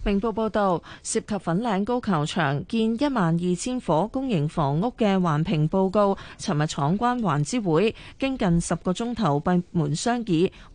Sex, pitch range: female, 165-210 Hz